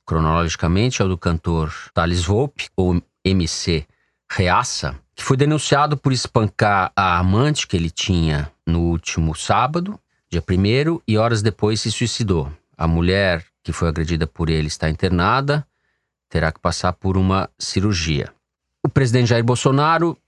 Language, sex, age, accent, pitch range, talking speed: Portuguese, male, 40-59, Brazilian, 90-125 Hz, 145 wpm